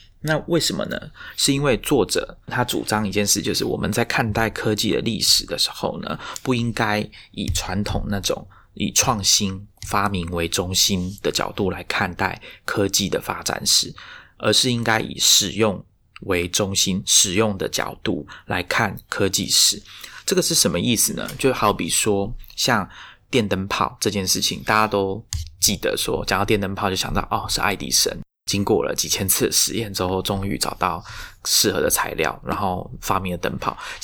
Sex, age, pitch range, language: male, 20-39, 95-115 Hz, Chinese